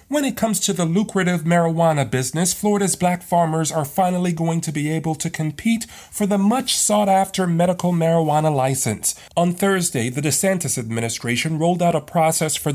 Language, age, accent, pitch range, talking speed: English, 40-59, American, 155-195 Hz, 175 wpm